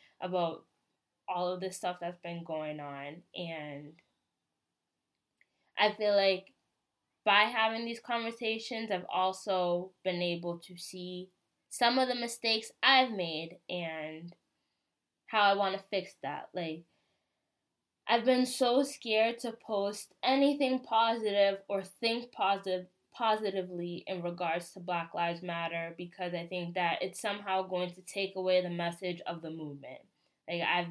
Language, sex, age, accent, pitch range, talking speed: English, female, 10-29, American, 175-200 Hz, 140 wpm